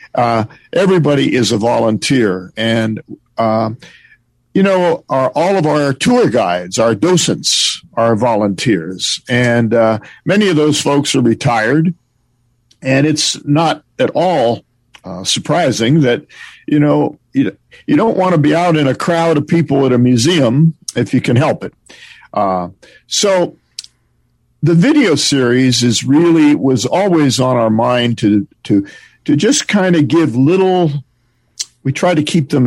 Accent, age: American, 50-69